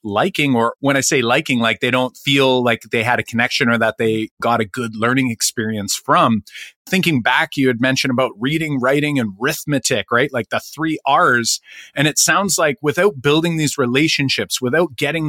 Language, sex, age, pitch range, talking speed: English, male, 30-49, 115-140 Hz, 190 wpm